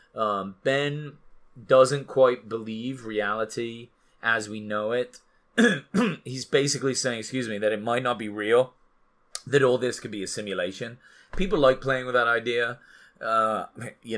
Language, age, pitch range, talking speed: English, 30-49, 100-125 Hz, 150 wpm